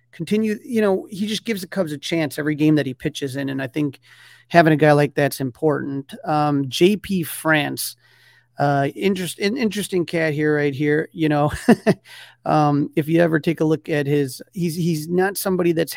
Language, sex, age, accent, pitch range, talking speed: English, male, 30-49, American, 140-165 Hz, 190 wpm